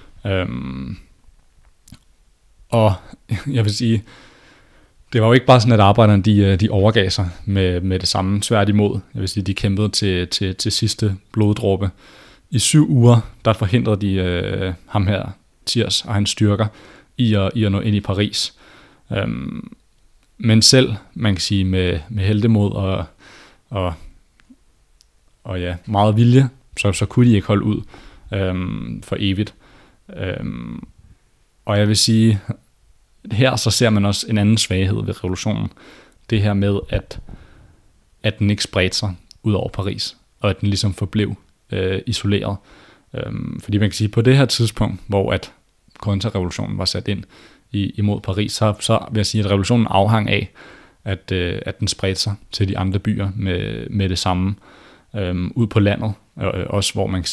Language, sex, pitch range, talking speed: Danish, male, 95-110 Hz, 170 wpm